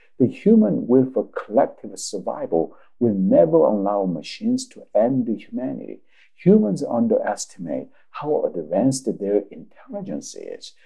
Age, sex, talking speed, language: 50-69, male, 115 wpm, English